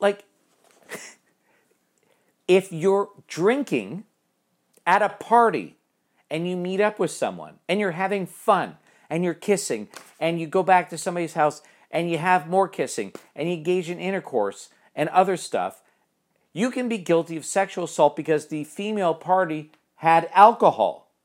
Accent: American